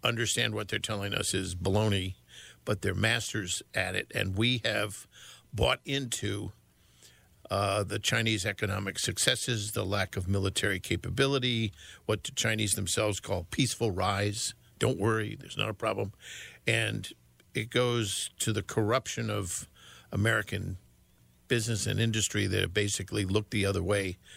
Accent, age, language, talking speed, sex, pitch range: American, 50-69, English, 145 wpm, male, 100-115 Hz